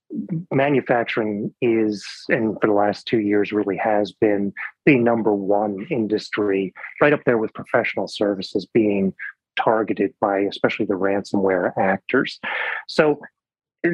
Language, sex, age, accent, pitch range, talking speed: English, male, 30-49, American, 110-135 Hz, 130 wpm